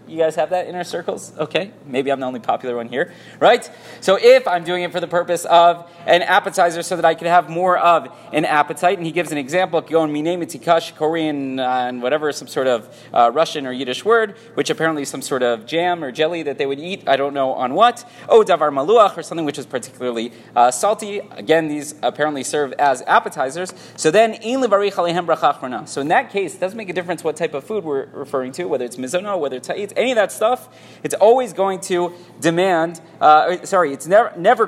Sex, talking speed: male, 210 wpm